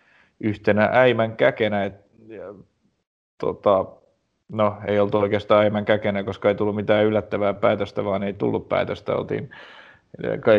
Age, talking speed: 30-49, 135 wpm